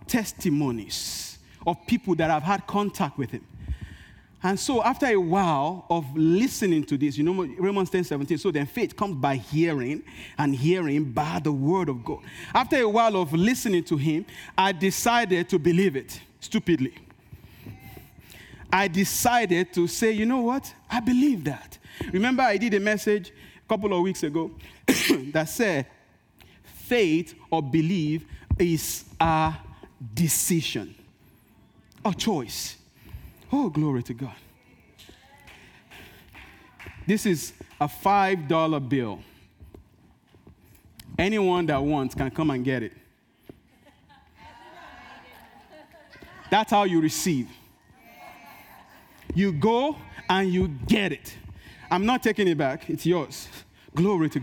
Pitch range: 135-195 Hz